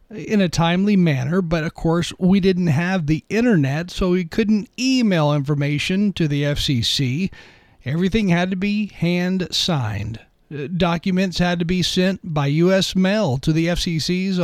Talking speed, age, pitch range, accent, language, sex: 155 wpm, 50-69, 160-210 Hz, American, English, male